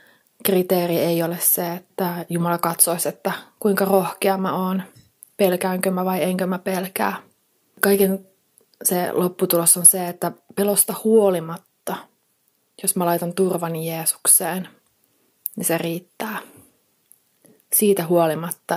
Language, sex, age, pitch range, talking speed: Finnish, female, 30-49, 175-195 Hz, 115 wpm